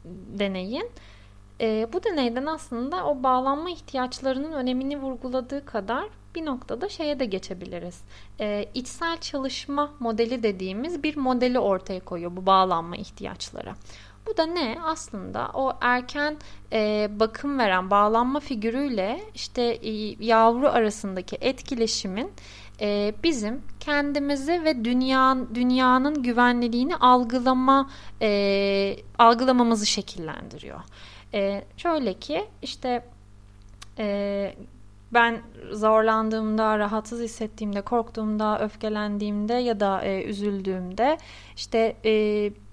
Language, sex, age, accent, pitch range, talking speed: Turkish, female, 30-49, native, 205-255 Hz, 95 wpm